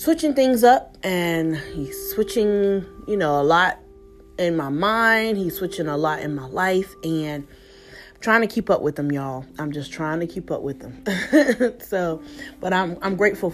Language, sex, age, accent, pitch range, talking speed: English, female, 30-49, American, 160-200 Hz, 185 wpm